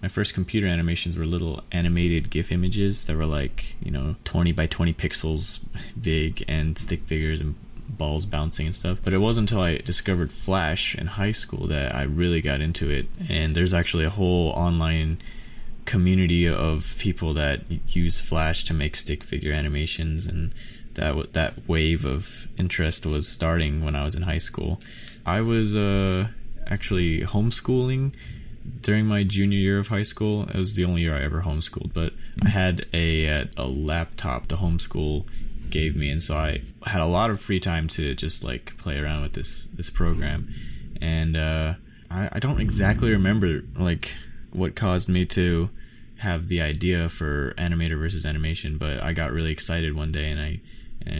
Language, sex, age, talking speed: English, male, 20-39, 175 wpm